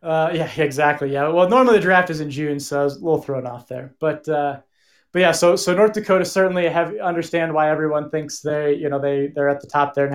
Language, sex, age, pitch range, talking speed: English, male, 20-39, 145-165 Hz, 255 wpm